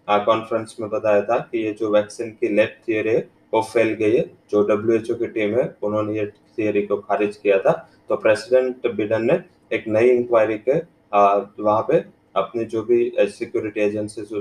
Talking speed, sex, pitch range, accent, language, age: 185 wpm, male, 105-120 Hz, Indian, English, 20-39